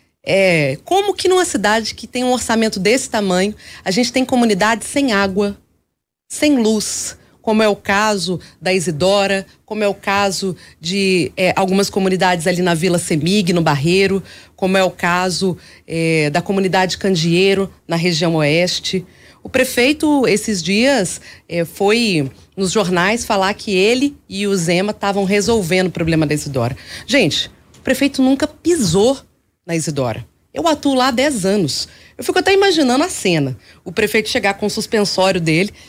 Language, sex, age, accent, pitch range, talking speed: Portuguese, female, 30-49, Brazilian, 175-245 Hz, 155 wpm